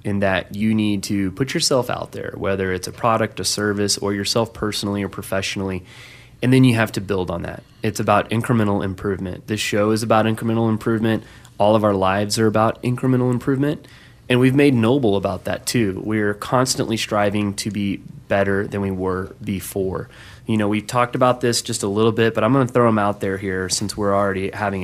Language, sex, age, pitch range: English, male, 20-39, 100-120 Hz